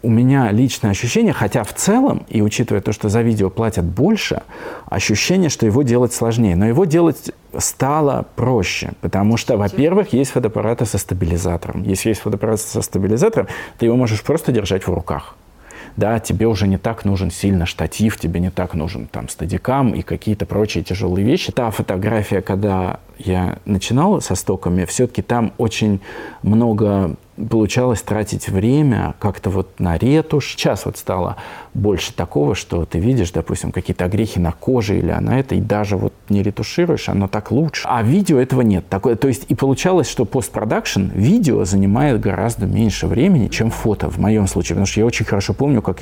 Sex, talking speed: male, 175 wpm